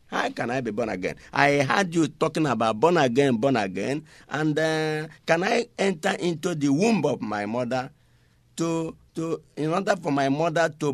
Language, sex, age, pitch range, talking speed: English, male, 50-69, 120-160 Hz, 185 wpm